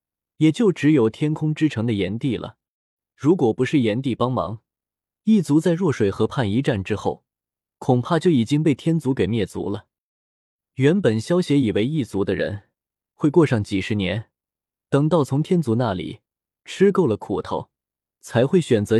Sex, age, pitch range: male, 20-39, 110-165 Hz